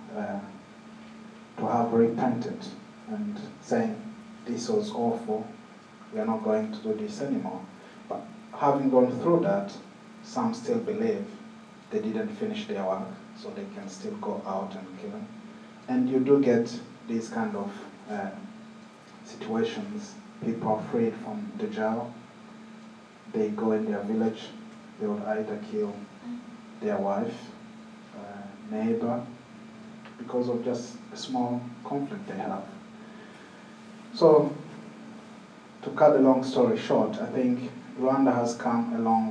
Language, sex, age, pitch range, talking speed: English, male, 30-49, 175-220 Hz, 135 wpm